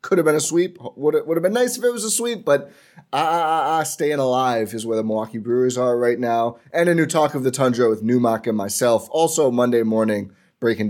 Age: 30-49